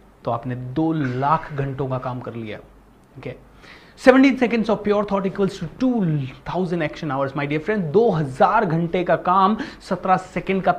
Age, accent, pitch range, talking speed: 30-49, native, 170-265 Hz, 105 wpm